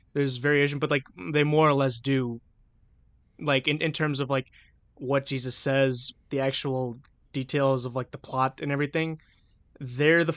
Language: English